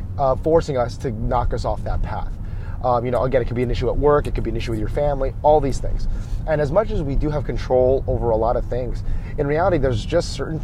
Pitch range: 105-135 Hz